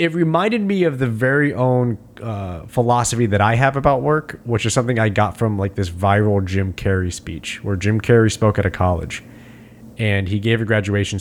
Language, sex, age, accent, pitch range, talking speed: English, male, 30-49, American, 100-120 Hz, 205 wpm